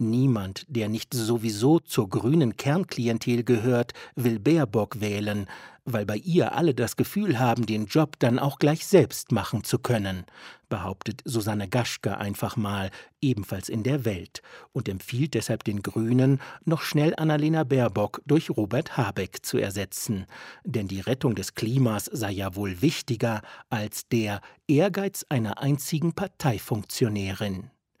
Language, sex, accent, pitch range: German, male, German, 105-135 Hz